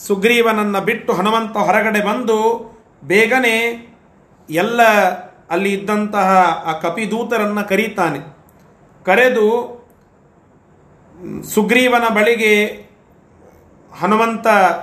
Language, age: Kannada, 40-59